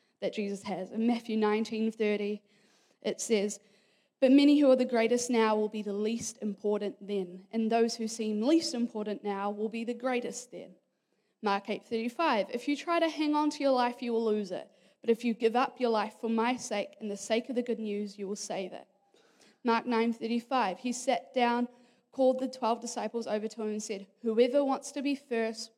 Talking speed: 210 wpm